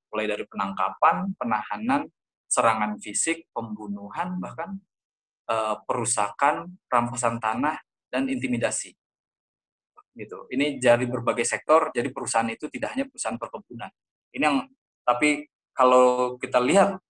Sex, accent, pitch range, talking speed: male, native, 110-150 Hz, 110 wpm